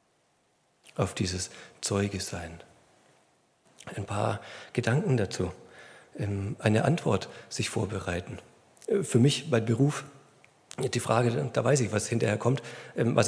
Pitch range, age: 115-135 Hz, 40-59